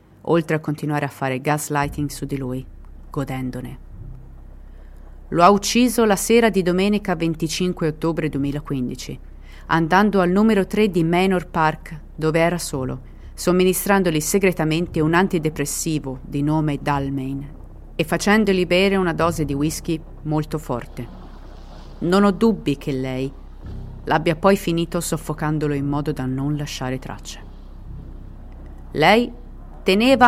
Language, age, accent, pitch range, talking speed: Italian, 30-49, native, 130-180 Hz, 125 wpm